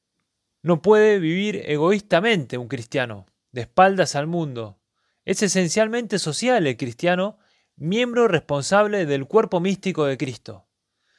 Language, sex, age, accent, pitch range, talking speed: Spanish, male, 20-39, Argentinian, 135-190 Hz, 120 wpm